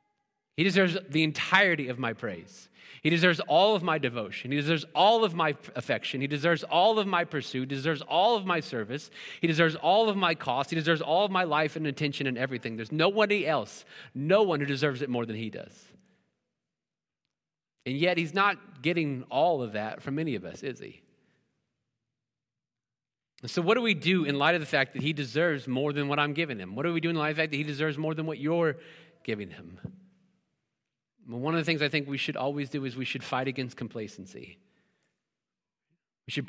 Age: 30-49